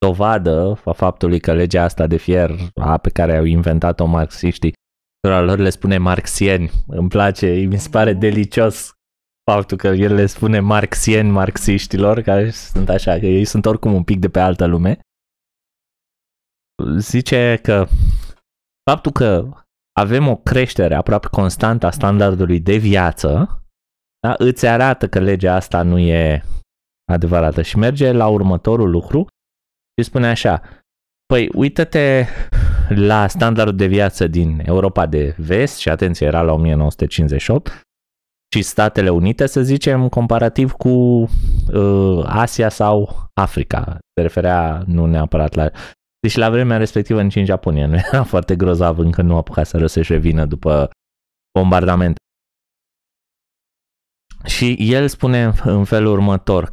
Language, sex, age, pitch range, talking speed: Romanian, male, 20-39, 80-105 Hz, 135 wpm